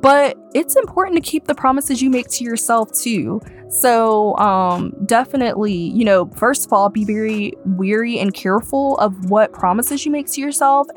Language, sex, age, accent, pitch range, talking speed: English, female, 20-39, American, 195-245 Hz, 175 wpm